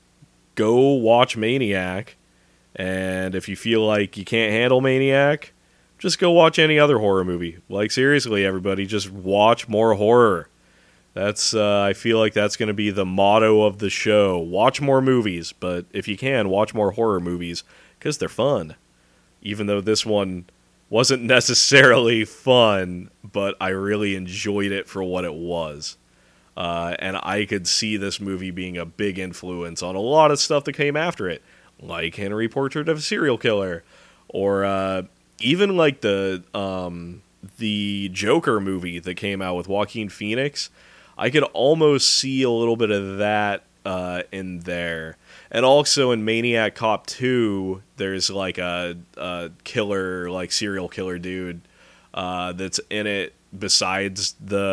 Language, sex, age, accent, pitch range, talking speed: English, male, 30-49, American, 90-115 Hz, 160 wpm